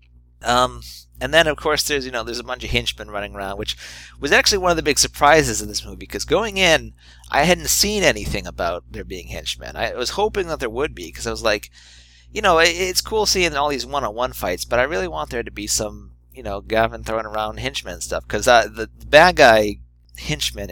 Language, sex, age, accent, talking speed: English, male, 30-49, American, 230 wpm